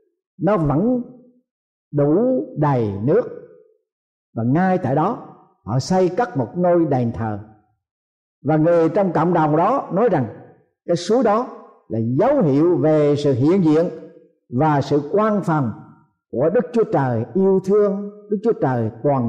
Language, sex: Thai, male